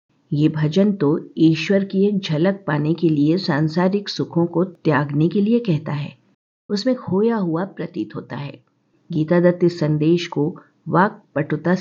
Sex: female